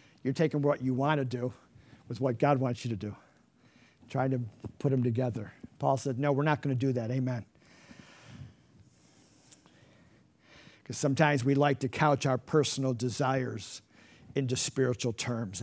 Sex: male